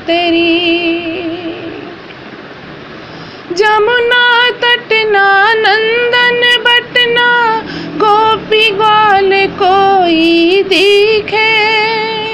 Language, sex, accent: Hindi, female, native